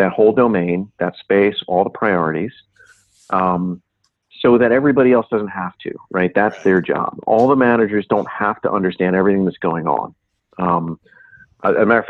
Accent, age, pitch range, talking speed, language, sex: American, 40-59, 95-120 Hz, 175 wpm, English, male